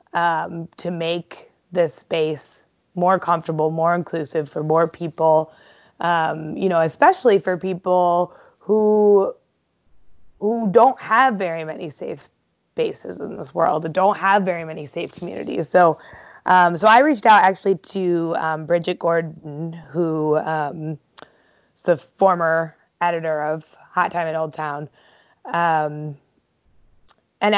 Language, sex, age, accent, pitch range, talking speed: English, female, 20-39, American, 160-190 Hz, 135 wpm